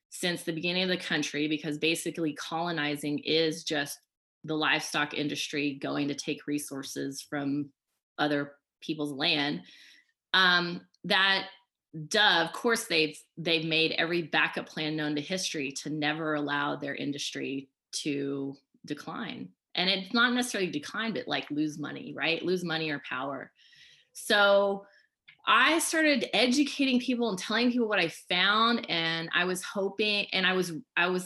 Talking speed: 150 wpm